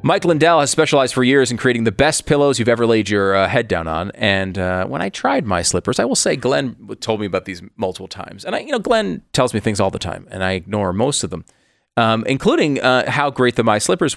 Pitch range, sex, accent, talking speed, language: 95-130 Hz, male, American, 260 wpm, English